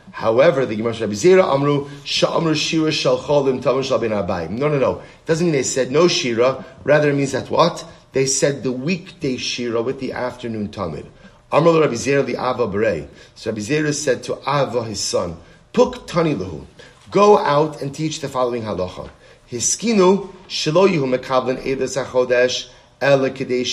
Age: 30-49